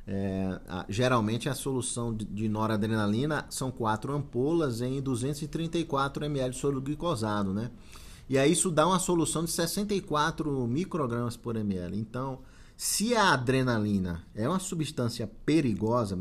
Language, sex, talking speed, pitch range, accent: Portuguese, male, 135 wpm, 115-155 Hz, Brazilian